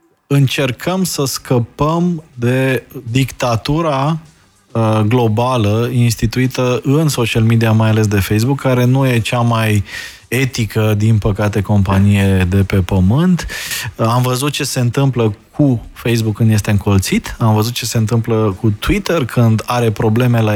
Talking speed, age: 135 wpm, 20-39